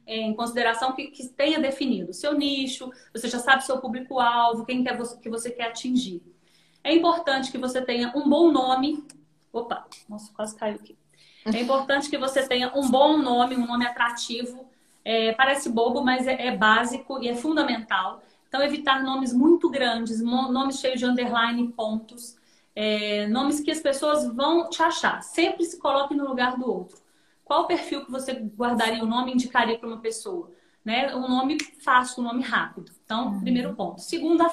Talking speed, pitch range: 185 wpm, 225-270 Hz